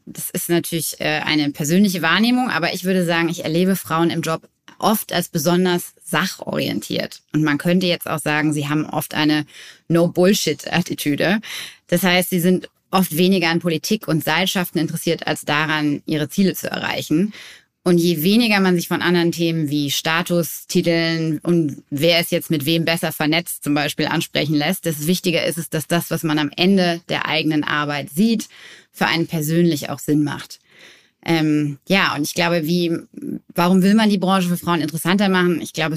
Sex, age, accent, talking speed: female, 20-39, German, 180 wpm